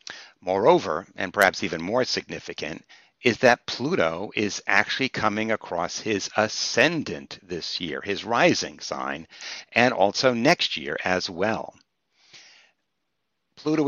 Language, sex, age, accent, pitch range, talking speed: English, male, 60-79, American, 100-125 Hz, 115 wpm